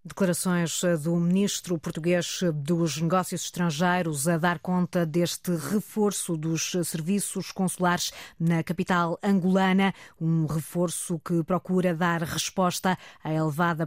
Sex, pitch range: female, 165-190 Hz